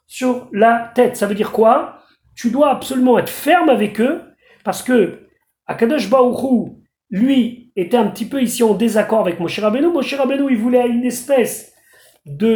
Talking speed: 170 wpm